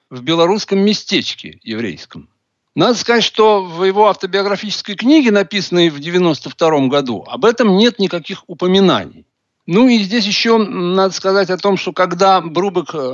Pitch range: 150-215 Hz